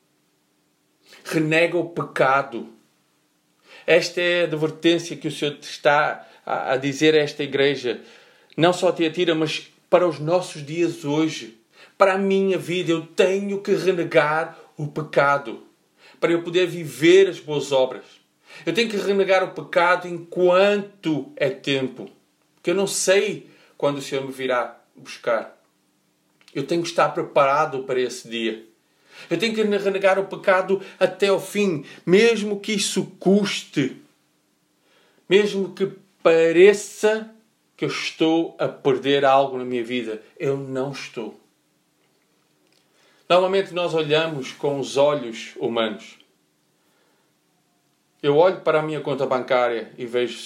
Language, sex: Portuguese, male